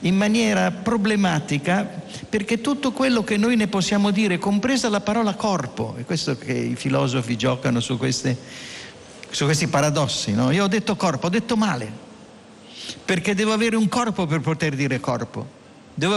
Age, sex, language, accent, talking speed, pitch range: 50-69, male, Italian, native, 165 wpm, 130-205 Hz